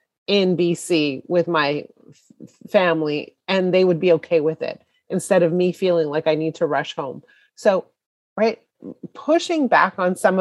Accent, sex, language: American, female, English